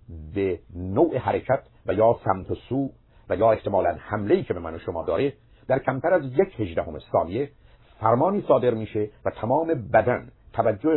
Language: Persian